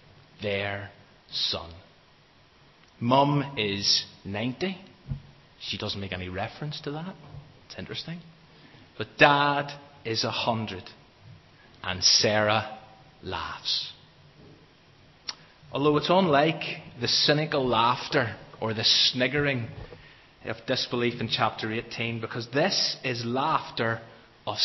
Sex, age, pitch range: male, 30-49, 110-150 Hz